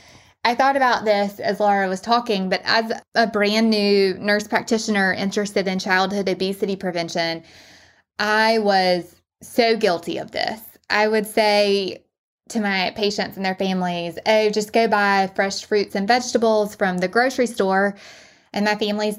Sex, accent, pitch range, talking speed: female, American, 195-245 Hz, 155 wpm